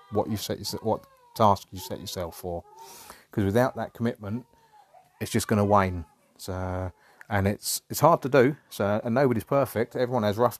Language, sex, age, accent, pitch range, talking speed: English, male, 30-49, British, 95-120 Hz, 180 wpm